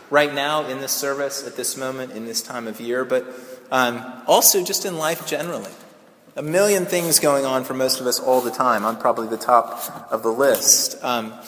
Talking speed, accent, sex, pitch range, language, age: 210 wpm, American, male, 145-200 Hz, English, 30-49